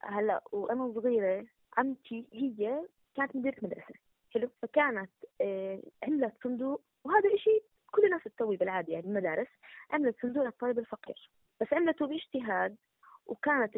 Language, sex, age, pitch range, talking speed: Arabic, female, 20-39, 220-275 Hz, 120 wpm